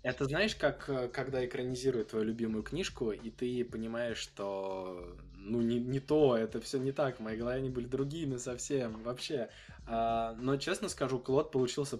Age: 20-39